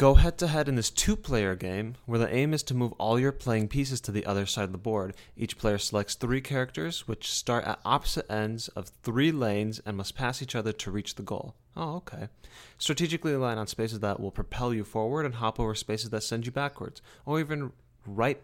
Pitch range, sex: 100-130 Hz, male